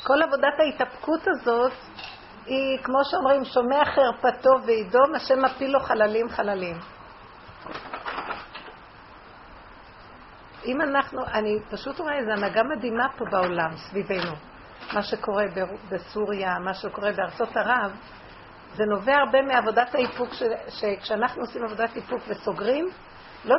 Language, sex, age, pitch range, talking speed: Hebrew, female, 50-69, 215-265 Hz, 110 wpm